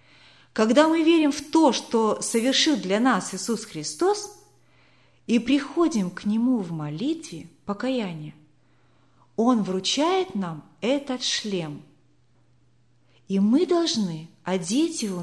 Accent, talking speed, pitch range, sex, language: native, 110 wpm, 180-270 Hz, female, Russian